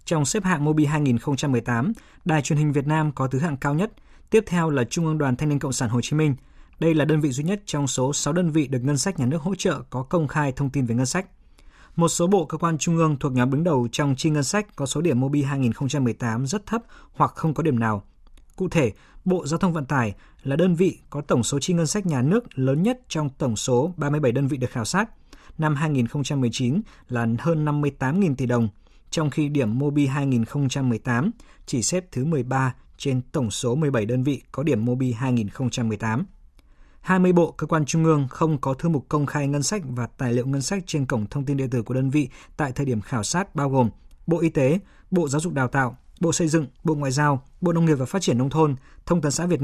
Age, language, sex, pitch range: 20-39, Vietnamese, male, 130-165 Hz